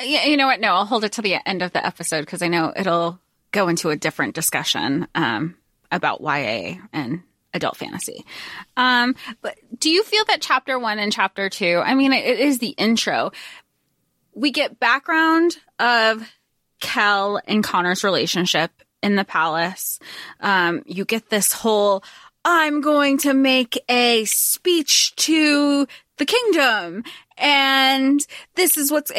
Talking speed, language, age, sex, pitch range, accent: 150 wpm, English, 20-39, female, 195-265 Hz, American